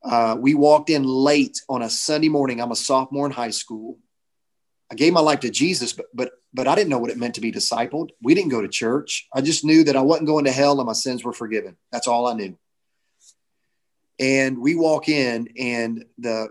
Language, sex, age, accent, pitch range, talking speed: English, male, 30-49, American, 120-150 Hz, 225 wpm